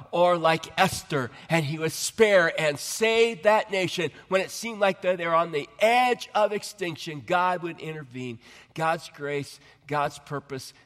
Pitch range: 140-180 Hz